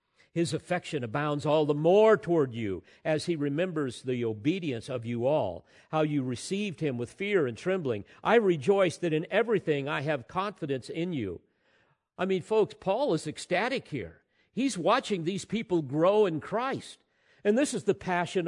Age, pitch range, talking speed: 50-69, 145-200 Hz, 170 wpm